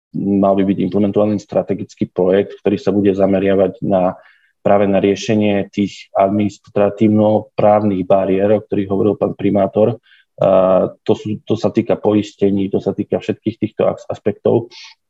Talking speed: 140 wpm